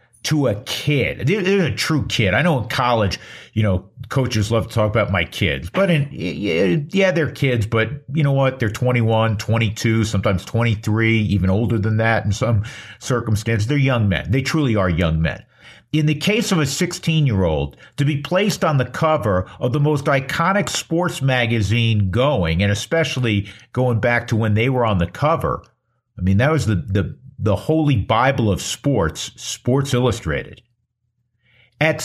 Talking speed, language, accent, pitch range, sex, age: 175 wpm, English, American, 110-145 Hz, male, 50-69